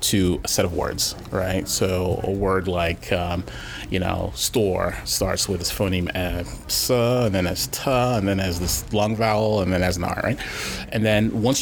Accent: American